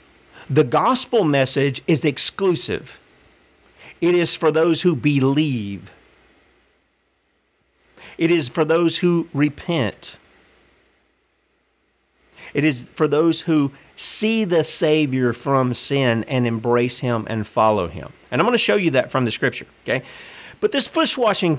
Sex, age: male, 50-69